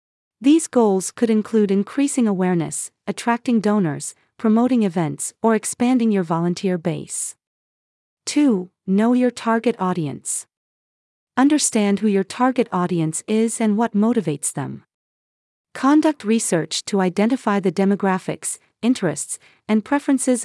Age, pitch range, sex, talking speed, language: 40-59, 185-235 Hz, female, 115 wpm, English